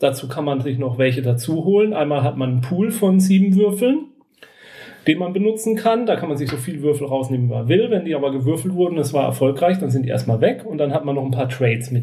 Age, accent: 40-59, German